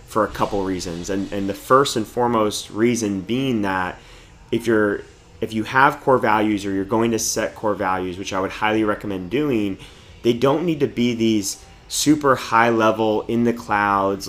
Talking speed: 190 wpm